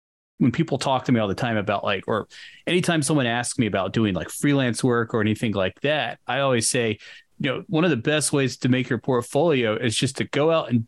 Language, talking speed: English, 245 wpm